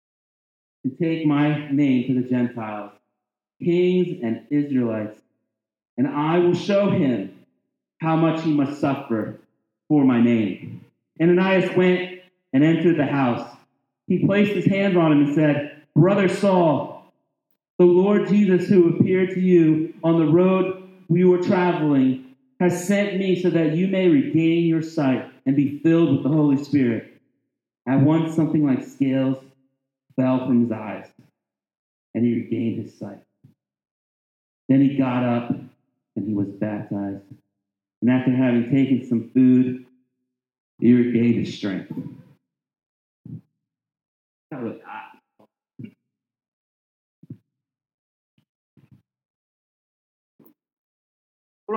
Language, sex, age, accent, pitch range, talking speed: English, male, 40-59, American, 120-175 Hz, 120 wpm